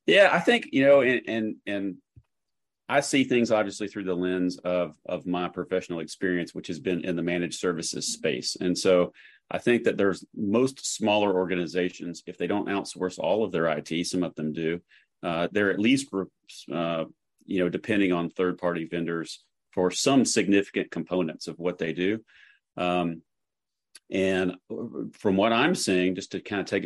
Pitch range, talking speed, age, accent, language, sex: 85-95 Hz, 175 wpm, 40-59, American, English, male